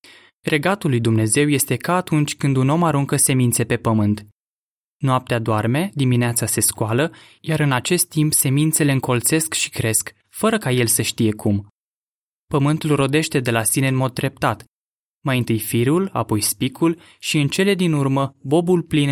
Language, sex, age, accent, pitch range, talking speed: Romanian, male, 20-39, native, 120-150 Hz, 165 wpm